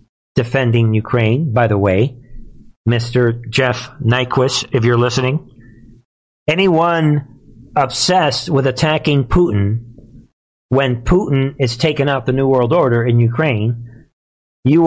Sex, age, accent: male, 50-69, American